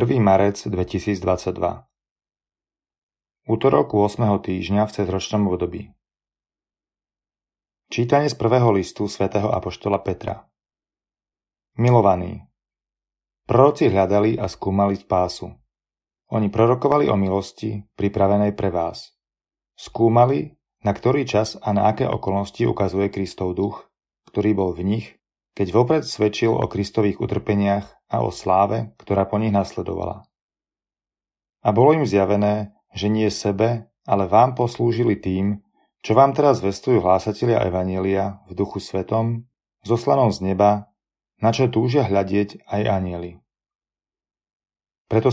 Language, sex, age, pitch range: Slovak, male, 30-49, 95-115 Hz